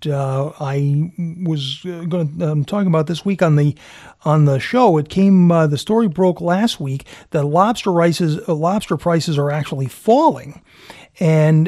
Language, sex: English, male